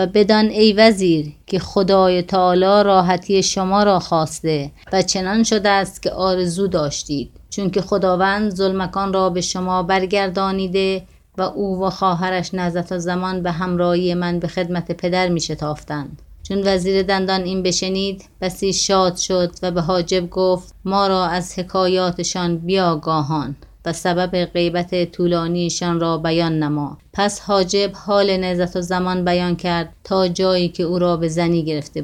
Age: 30-49